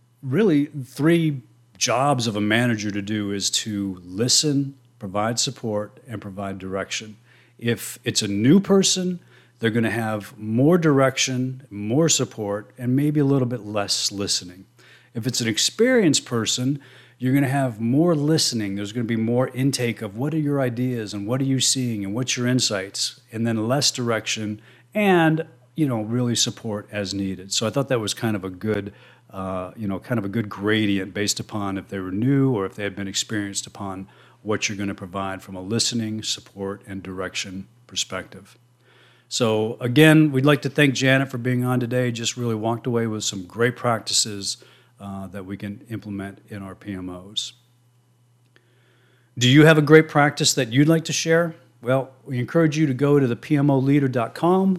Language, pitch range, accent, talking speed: English, 105-135 Hz, American, 185 wpm